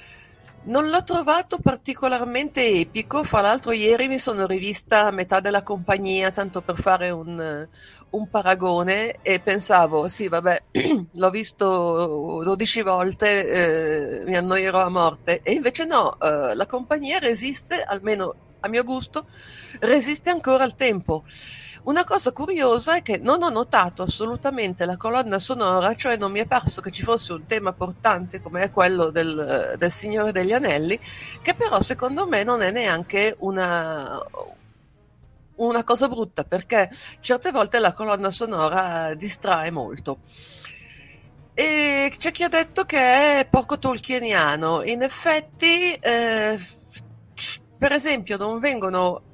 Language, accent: Italian, native